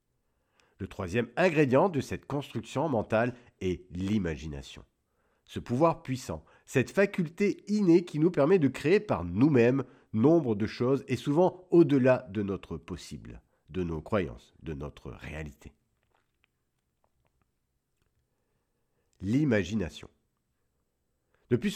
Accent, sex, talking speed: French, male, 110 wpm